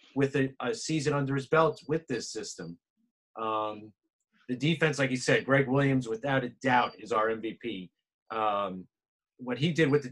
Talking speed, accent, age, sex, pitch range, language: 180 wpm, American, 30-49, male, 120-160 Hz, English